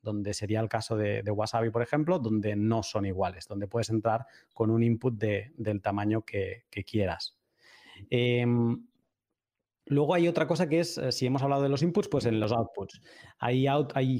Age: 20-39